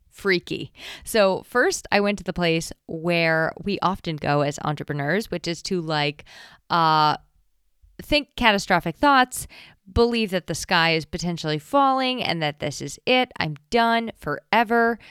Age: 20-39